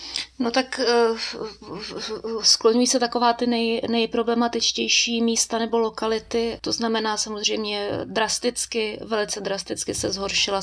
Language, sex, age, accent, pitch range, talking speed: Czech, female, 20-39, native, 185-225 Hz, 130 wpm